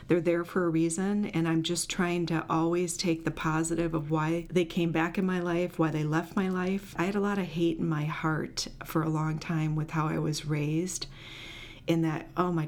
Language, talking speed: English, 230 wpm